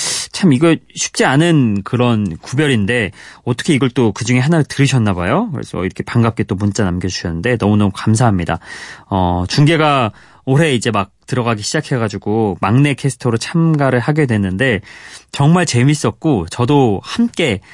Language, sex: Korean, male